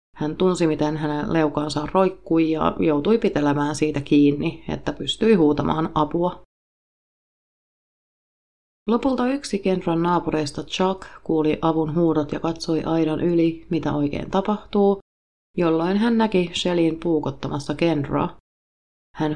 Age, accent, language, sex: 30-49, native, Finnish, female